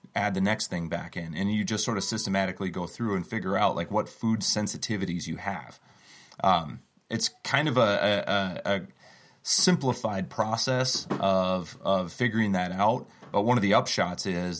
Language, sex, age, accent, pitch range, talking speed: English, male, 30-49, American, 90-110 Hz, 175 wpm